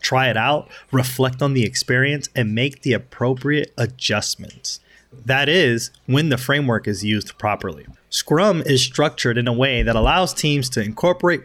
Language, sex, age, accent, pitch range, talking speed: English, male, 30-49, American, 115-135 Hz, 160 wpm